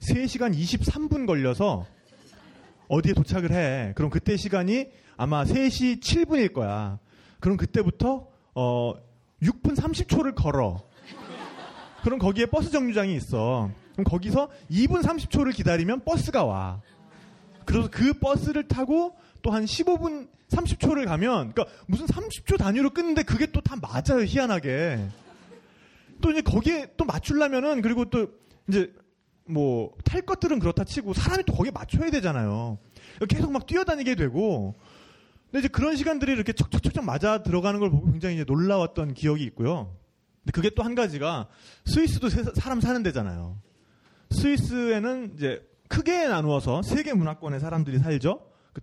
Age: 30-49